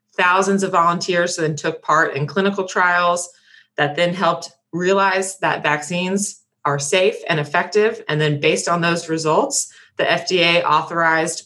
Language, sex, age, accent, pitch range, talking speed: English, female, 20-39, American, 160-185 Hz, 145 wpm